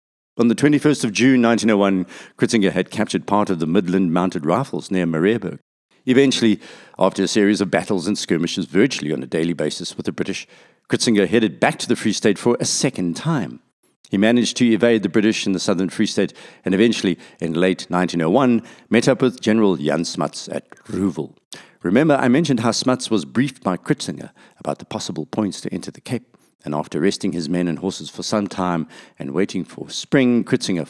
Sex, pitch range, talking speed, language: male, 90-120 Hz, 195 wpm, English